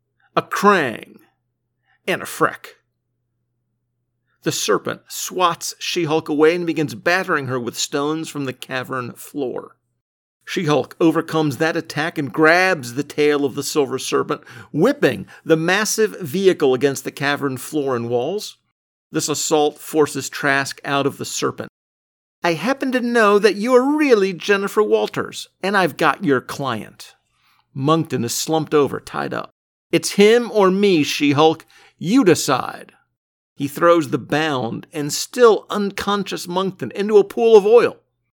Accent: American